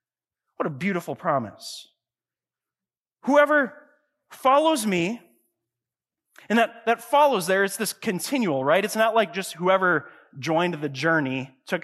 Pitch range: 175-255 Hz